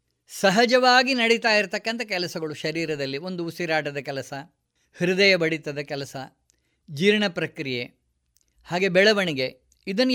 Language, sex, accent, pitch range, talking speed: Kannada, female, native, 160-245 Hz, 95 wpm